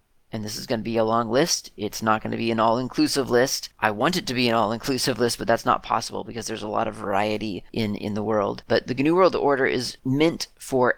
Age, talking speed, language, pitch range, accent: 40-59, 245 wpm, English, 110-130 Hz, American